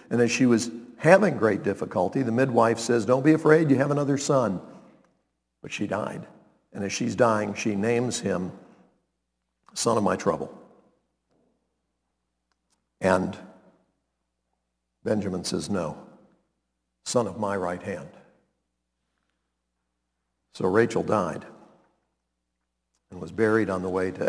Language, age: English, 60-79